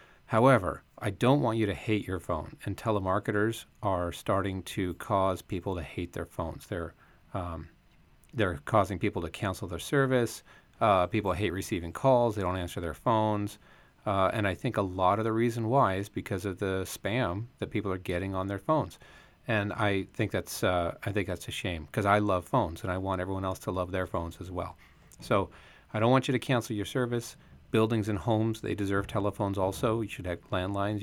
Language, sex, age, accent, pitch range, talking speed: English, male, 30-49, American, 90-110 Hz, 205 wpm